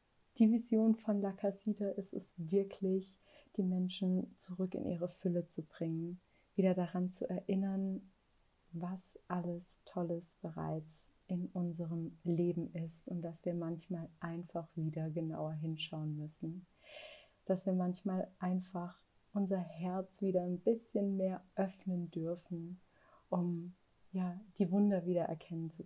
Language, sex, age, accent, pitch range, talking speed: German, female, 30-49, German, 170-195 Hz, 130 wpm